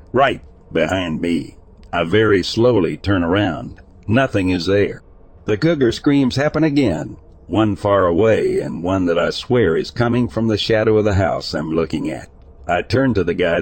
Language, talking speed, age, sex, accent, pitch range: English, 175 wpm, 60-79, male, American, 85-115 Hz